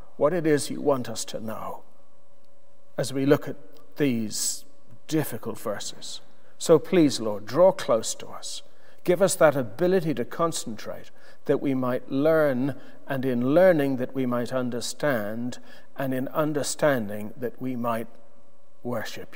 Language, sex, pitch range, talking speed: English, male, 125-175 Hz, 145 wpm